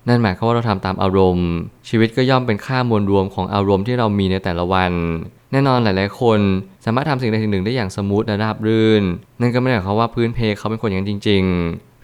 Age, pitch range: 20-39, 100-115 Hz